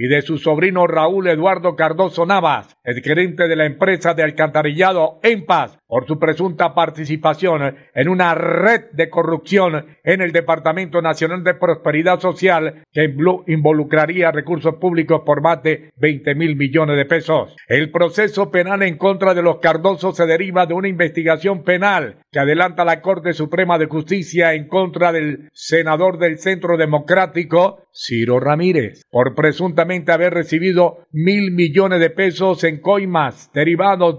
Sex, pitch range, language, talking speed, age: male, 155-180 Hz, Spanish, 150 wpm, 50-69